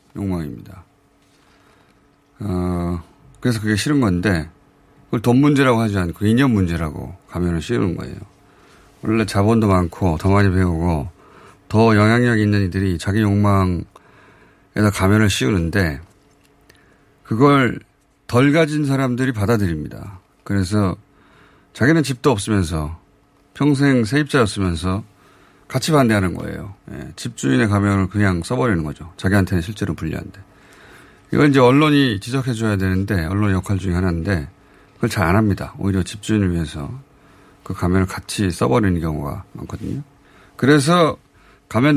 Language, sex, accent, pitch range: Korean, male, native, 95-130 Hz